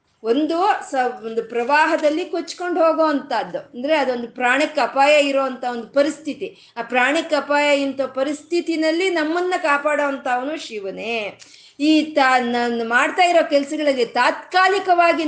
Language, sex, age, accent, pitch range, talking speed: Kannada, female, 20-39, native, 230-300 Hz, 110 wpm